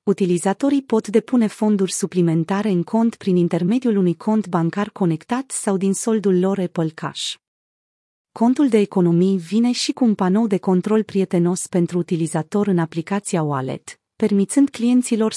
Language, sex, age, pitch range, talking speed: Romanian, female, 30-49, 180-225 Hz, 145 wpm